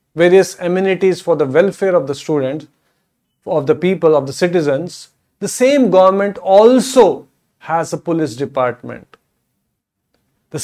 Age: 40-59